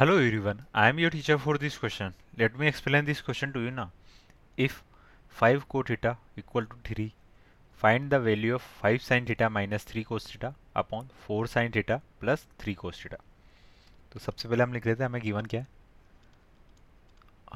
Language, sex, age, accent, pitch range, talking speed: Hindi, male, 20-39, native, 100-120 Hz, 175 wpm